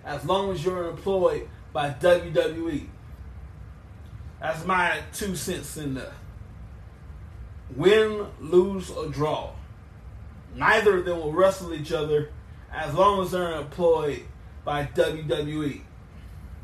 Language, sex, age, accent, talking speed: English, male, 20-39, American, 110 wpm